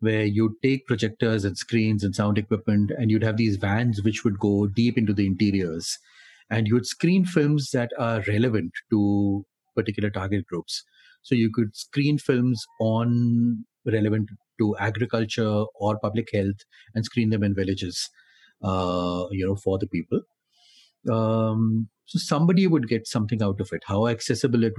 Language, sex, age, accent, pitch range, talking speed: English, male, 30-49, Indian, 100-120 Hz, 165 wpm